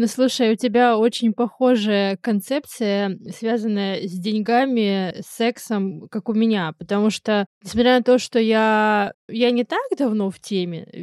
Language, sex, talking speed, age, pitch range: Russian, female, 150 wpm, 20-39, 205-240 Hz